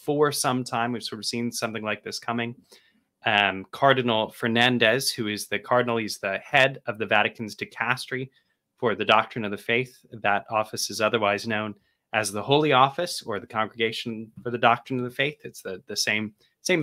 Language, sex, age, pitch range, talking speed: English, male, 20-39, 110-140 Hz, 195 wpm